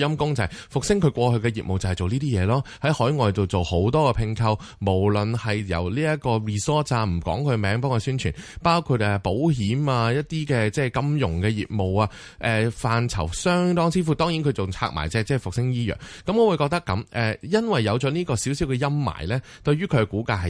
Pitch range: 95-135 Hz